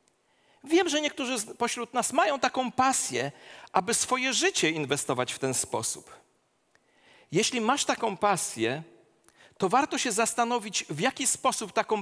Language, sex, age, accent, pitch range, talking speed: Polish, male, 40-59, native, 195-275 Hz, 135 wpm